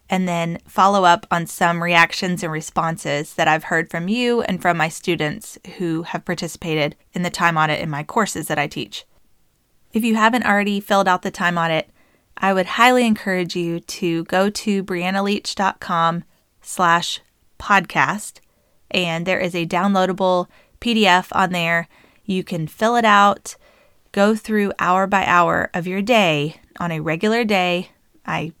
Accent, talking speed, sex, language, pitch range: American, 160 wpm, female, English, 170-205 Hz